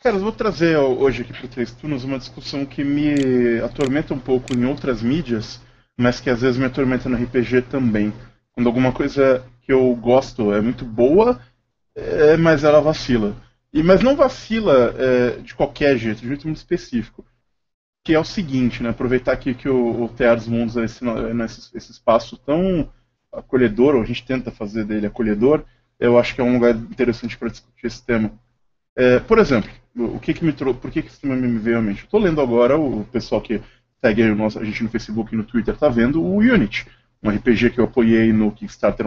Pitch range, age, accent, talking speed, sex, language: 120-150 Hz, 20-39, Brazilian, 210 wpm, male, Portuguese